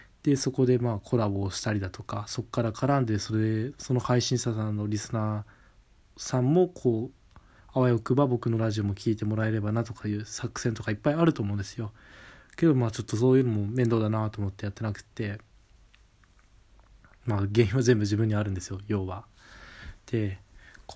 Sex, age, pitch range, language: male, 20-39, 105-125 Hz, Japanese